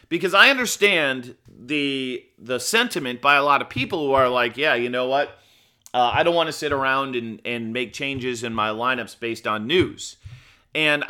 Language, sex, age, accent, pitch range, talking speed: English, male, 30-49, American, 125-160 Hz, 195 wpm